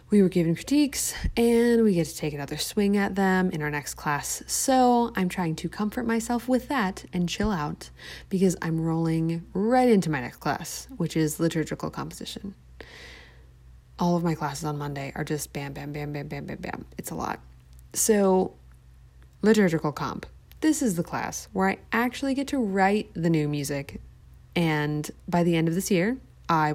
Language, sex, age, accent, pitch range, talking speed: English, female, 20-39, American, 155-215 Hz, 185 wpm